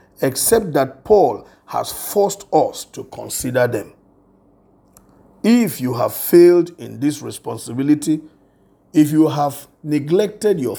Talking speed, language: 115 wpm, English